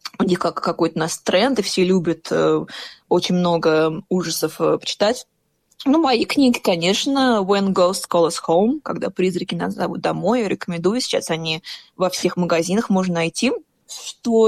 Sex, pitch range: female, 170-200 Hz